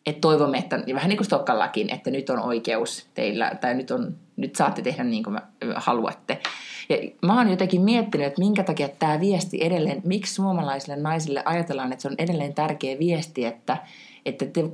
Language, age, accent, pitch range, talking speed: Finnish, 30-49, native, 140-195 Hz, 185 wpm